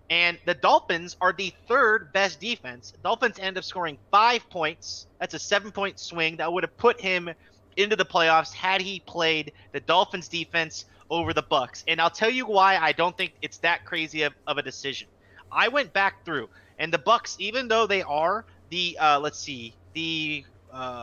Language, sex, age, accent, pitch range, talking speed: English, male, 30-49, American, 145-195 Hz, 195 wpm